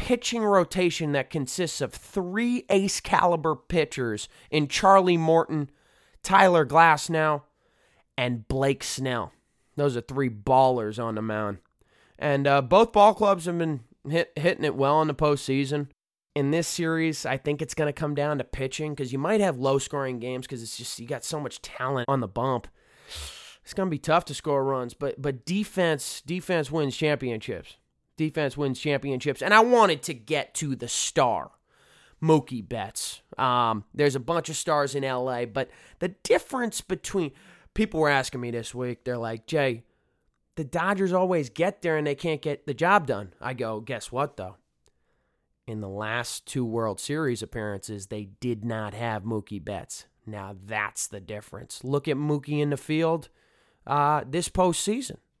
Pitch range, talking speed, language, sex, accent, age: 120-165 Hz, 170 wpm, English, male, American, 20-39